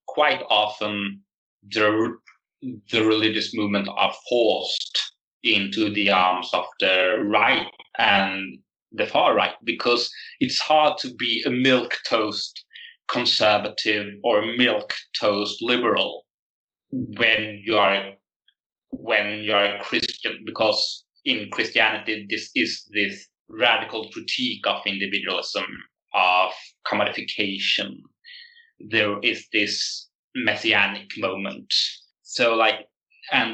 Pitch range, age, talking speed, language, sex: 100-120 Hz, 30-49, 105 wpm, English, male